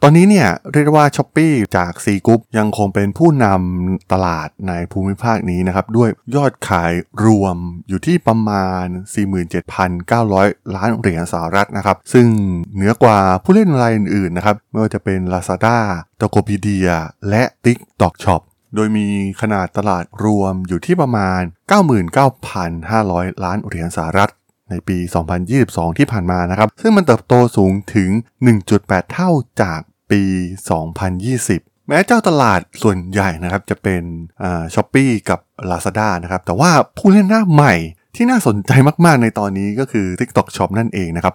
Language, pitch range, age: Thai, 95-120 Hz, 20-39